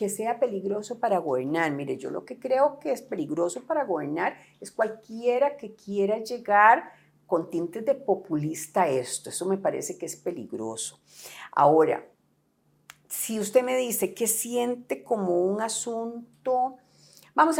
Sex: female